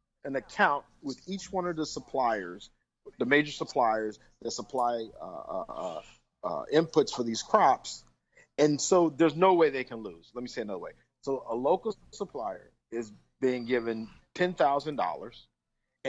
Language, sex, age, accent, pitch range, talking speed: English, male, 40-59, American, 120-170 Hz, 155 wpm